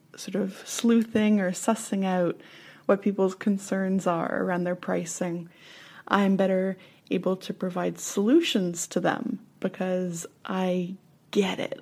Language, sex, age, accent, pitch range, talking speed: English, female, 20-39, American, 180-225 Hz, 125 wpm